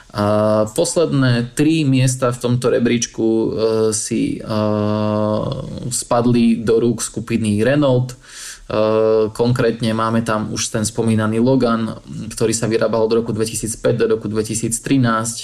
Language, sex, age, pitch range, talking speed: Slovak, male, 20-39, 110-125 Hz, 110 wpm